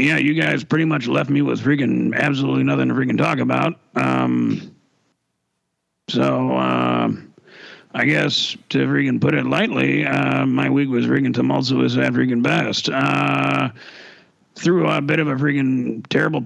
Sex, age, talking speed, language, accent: male, 40-59, 155 wpm, English, American